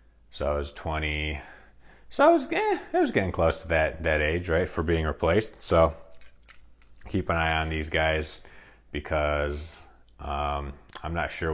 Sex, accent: male, American